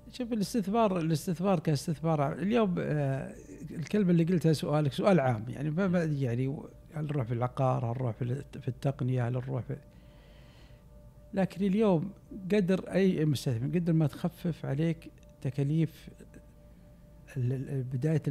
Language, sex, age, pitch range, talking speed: Arabic, male, 60-79, 130-160 Hz, 100 wpm